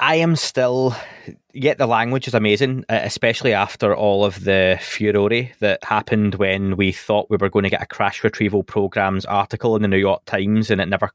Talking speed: 200 wpm